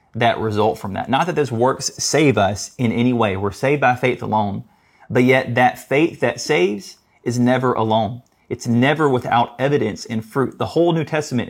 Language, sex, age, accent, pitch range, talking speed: English, male, 30-49, American, 110-135 Hz, 195 wpm